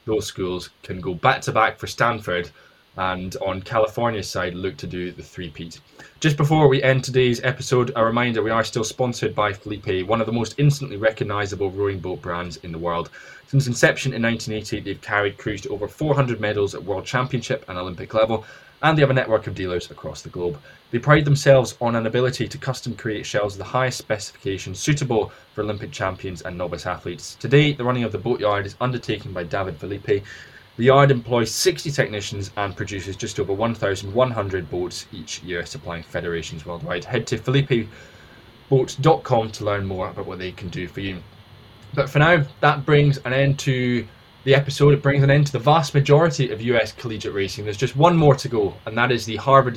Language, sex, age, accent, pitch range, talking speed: English, male, 10-29, British, 100-135 Hz, 200 wpm